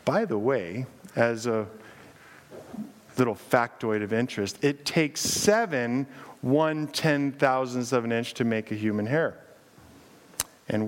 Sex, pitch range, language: male, 120-180 Hz, English